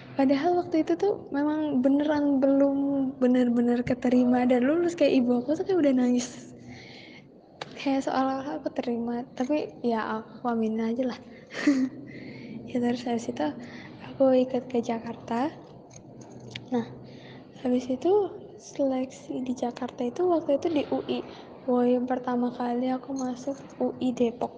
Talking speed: 140 wpm